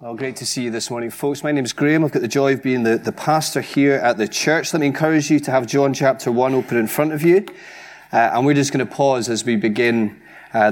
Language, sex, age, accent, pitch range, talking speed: English, male, 30-49, British, 110-140 Hz, 280 wpm